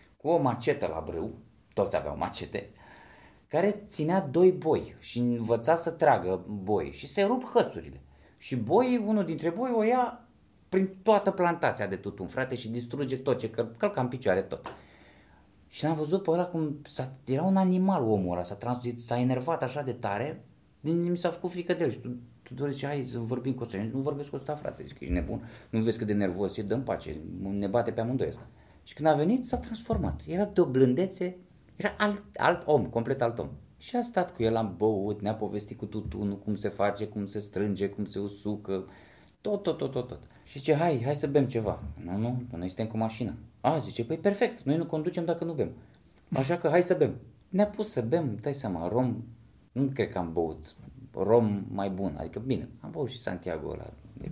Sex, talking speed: male, 210 wpm